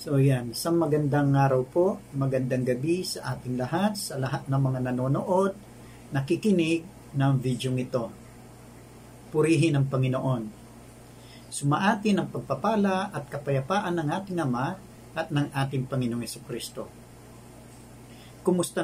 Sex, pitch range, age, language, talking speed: male, 130-170 Hz, 50-69, English, 120 wpm